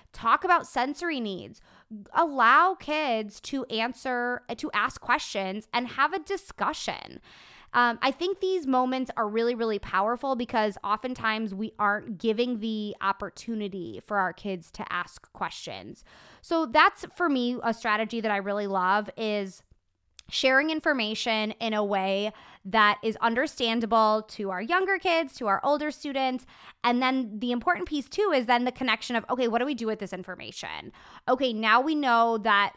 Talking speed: 160 wpm